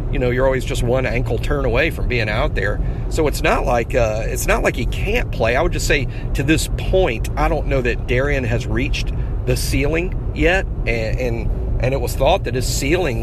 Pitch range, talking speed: 120-140 Hz, 225 wpm